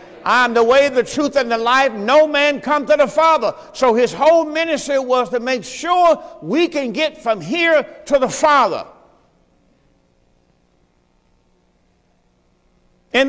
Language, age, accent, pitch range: English, 50-69, American, 260-320 Hz